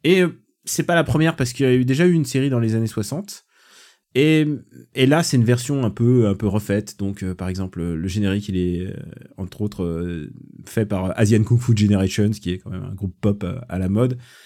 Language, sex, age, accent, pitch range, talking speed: French, male, 20-39, French, 100-135 Hz, 220 wpm